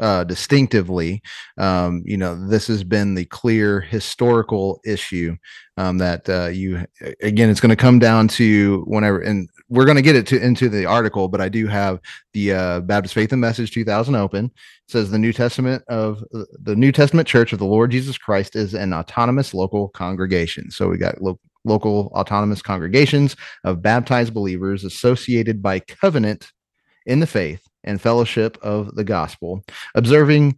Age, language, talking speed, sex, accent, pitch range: 30-49, English, 170 wpm, male, American, 95-120 Hz